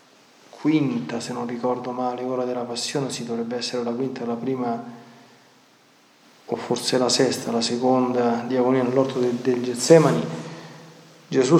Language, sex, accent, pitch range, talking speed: Italian, male, native, 125-155 Hz, 145 wpm